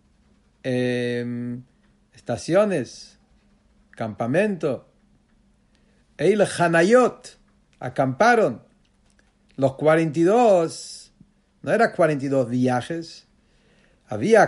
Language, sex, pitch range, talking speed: English, male, 145-205 Hz, 55 wpm